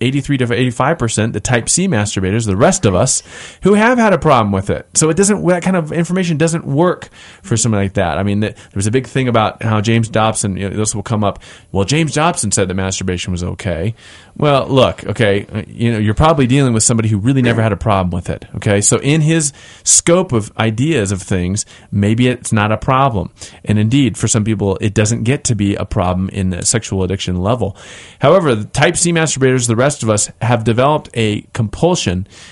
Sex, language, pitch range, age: male, English, 100-135 Hz, 30-49